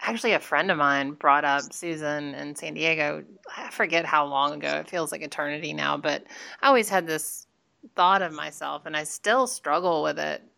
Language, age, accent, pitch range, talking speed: English, 30-49, American, 145-170 Hz, 200 wpm